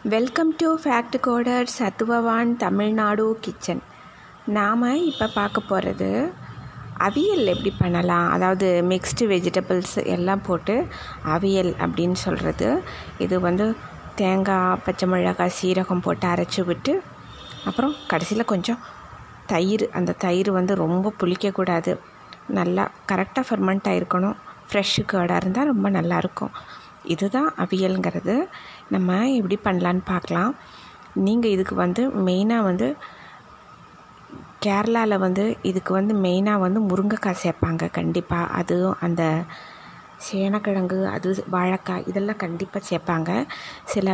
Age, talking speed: 20-39, 105 wpm